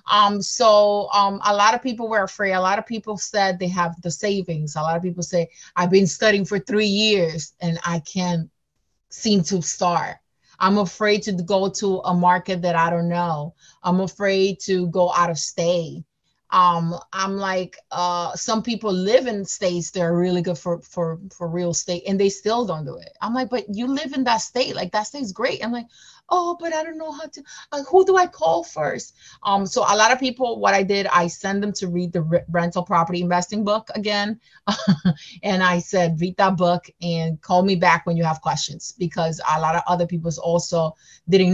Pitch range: 170-205 Hz